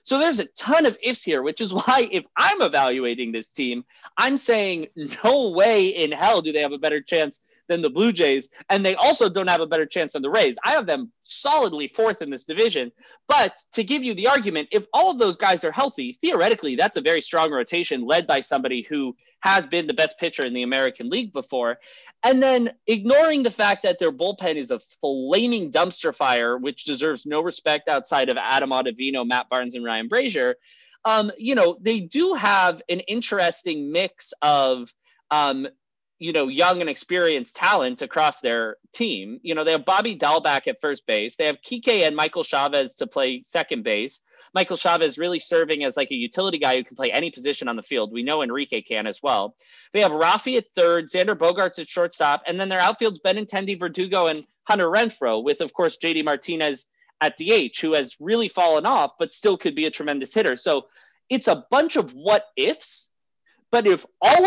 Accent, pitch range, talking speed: American, 150-245 Hz, 200 wpm